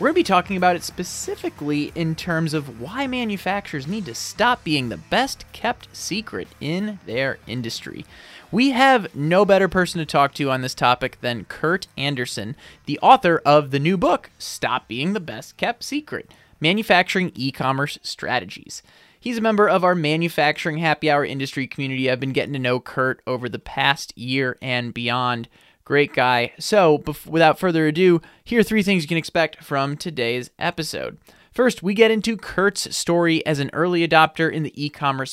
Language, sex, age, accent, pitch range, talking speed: English, male, 20-39, American, 135-185 Hz, 175 wpm